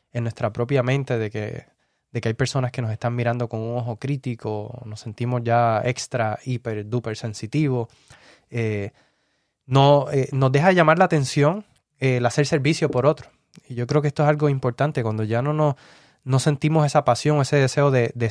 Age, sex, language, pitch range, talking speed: 20-39, male, Spanish, 120-140 Hz, 185 wpm